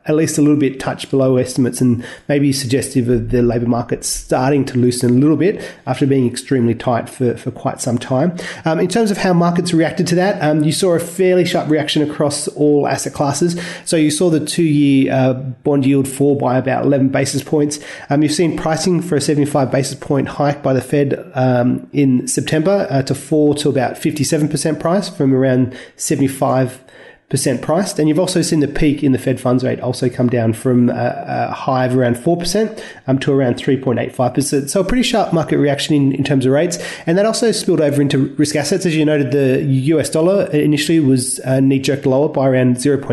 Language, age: English, 30-49